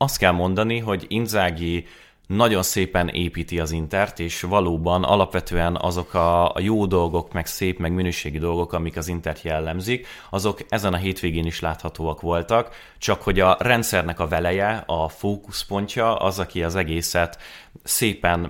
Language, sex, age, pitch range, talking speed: Hungarian, male, 30-49, 80-95 Hz, 150 wpm